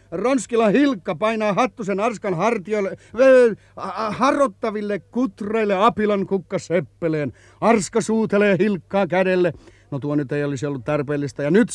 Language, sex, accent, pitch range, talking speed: Finnish, male, native, 140-205 Hz, 130 wpm